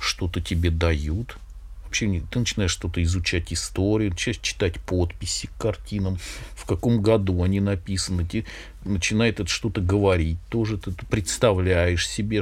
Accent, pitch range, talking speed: native, 80-105 Hz, 125 wpm